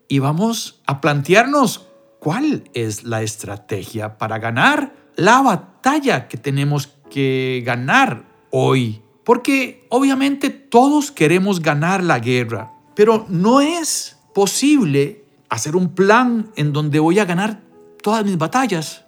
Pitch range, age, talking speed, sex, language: 130-220 Hz, 50-69, 125 wpm, male, Spanish